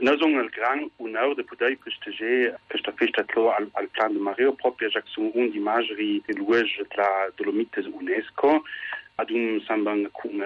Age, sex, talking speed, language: 40-59, male, 180 wpm, Italian